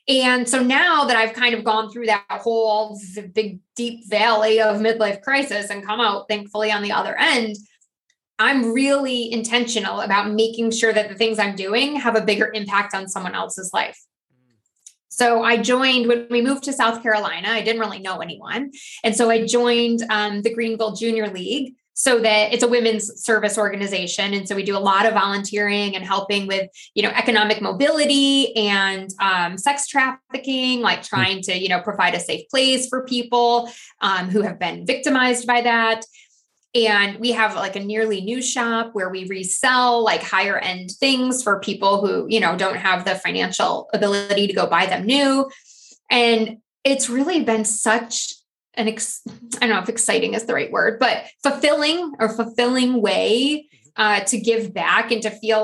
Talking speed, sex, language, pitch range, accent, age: 185 wpm, female, English, 200-240 Hz, American, 20-39